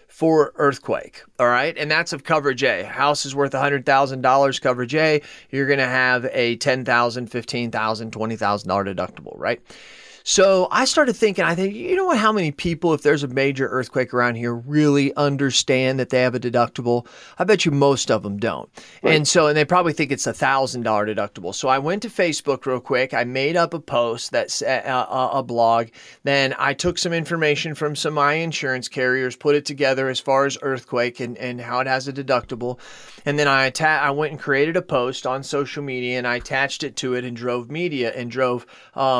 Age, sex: 30-49, male